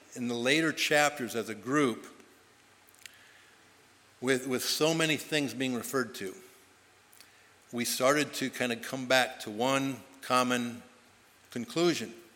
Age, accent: 60-79, American